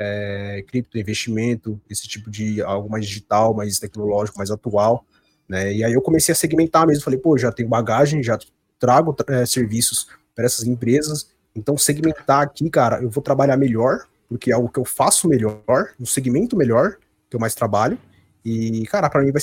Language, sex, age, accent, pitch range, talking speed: Portuguese, male, 20-39, Brazilian, 105-150 Hz, 190 wpm